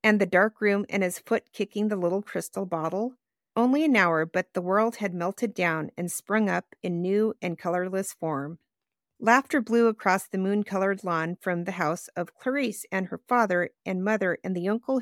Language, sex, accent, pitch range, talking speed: English, female, American, 180-230 Hz, 190 wpm